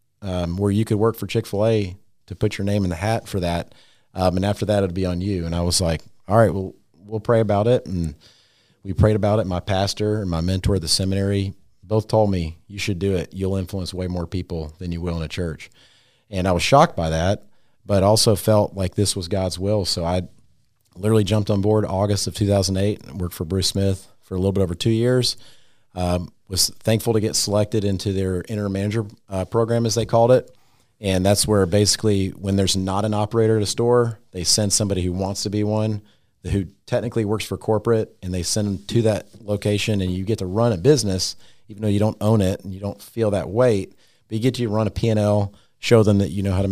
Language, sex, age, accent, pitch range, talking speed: English, male, 40-59, American, 95-110 Hz, 235 wpm